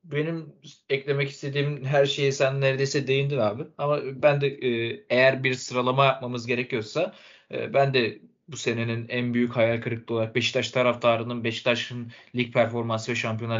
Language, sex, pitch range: Turkish, male, 115-140 Hz